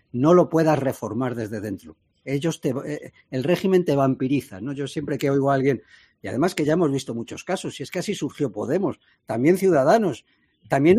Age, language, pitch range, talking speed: 50-69, Spanish, 120-155 Hz, 200 wpm